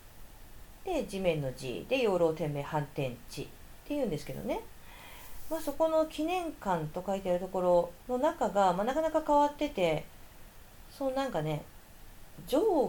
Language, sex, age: Japanese, female, 40-59